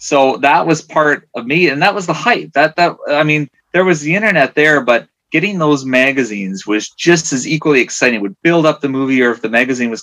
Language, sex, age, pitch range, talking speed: English, male, 30-49, 110-145 Hz, 240 wpm